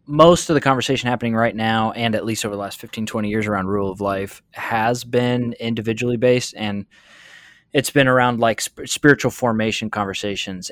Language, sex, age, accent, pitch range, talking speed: English, male, 20-39, American, 105-120 Hz, 185 wpm